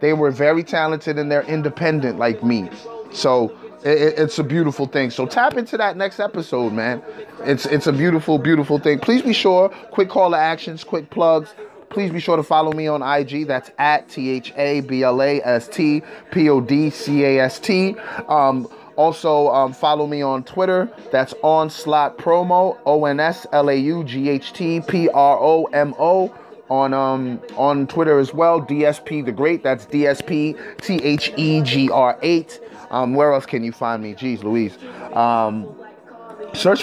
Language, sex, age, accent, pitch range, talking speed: English, male, 30-49, American, 140-170 Hz, 180 wpm